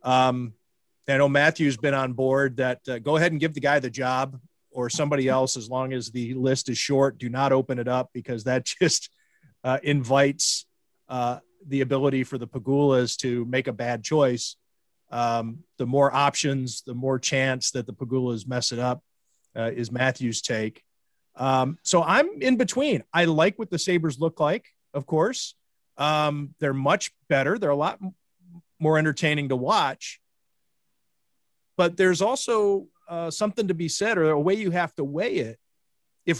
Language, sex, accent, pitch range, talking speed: English, male, American, 130-175 Hz, 180 wpm